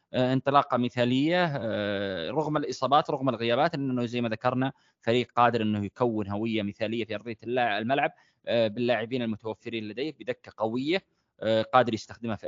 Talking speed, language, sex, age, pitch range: 130 wpm, Arabic, male, 20-39, 115-145 Hz